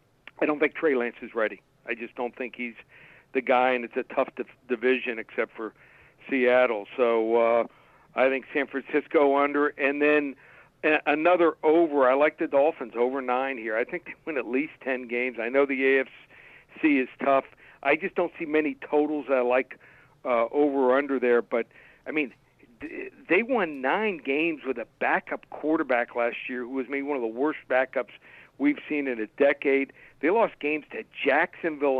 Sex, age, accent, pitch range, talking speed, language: male, 60-79, American, 125-150 Hz, 185 wpm, English